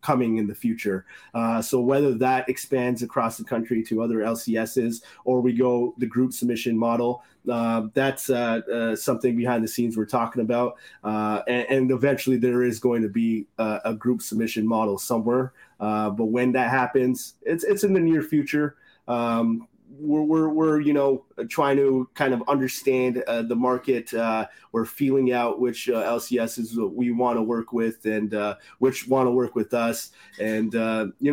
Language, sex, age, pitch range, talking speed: French, male, 20-39, 115-130 Hz, 185 wpm